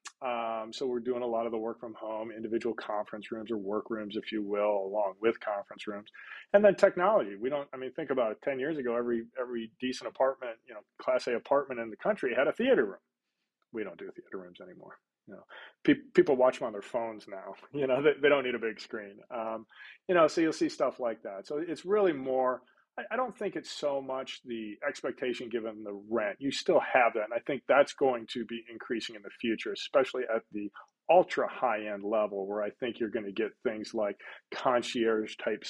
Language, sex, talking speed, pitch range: English, male, 225 wpm, 110-135 Hz